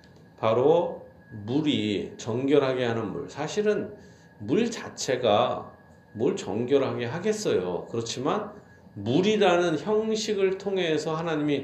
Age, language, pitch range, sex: 40-59, Korean, 115-155 Hz, male